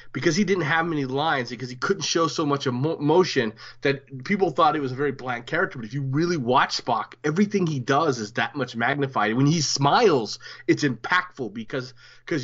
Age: 30-49